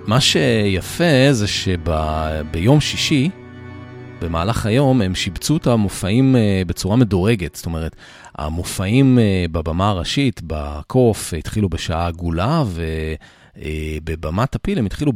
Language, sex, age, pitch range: Hebrew, male, 40-59, 80-120 Hz